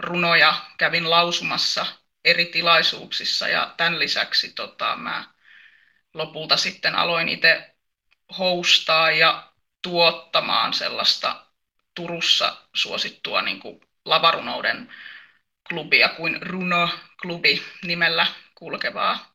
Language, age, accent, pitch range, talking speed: Finnish, 20-39, native, 165-195 Hz, 90 wpm